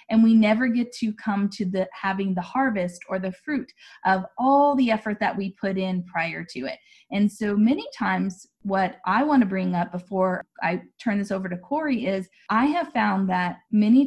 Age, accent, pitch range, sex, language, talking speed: 20-39, American, 185-235 Hz, female, English, 205 wpm